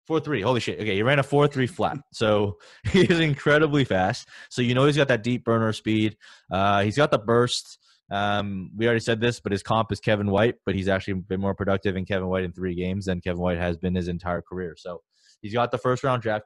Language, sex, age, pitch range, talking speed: English, male, 20-39, 95-125 Hz, 240 wpm